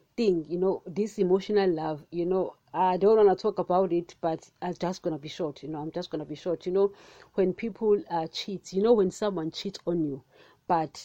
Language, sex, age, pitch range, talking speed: English, female, 40-59, 170-215 Hz, 230 wpm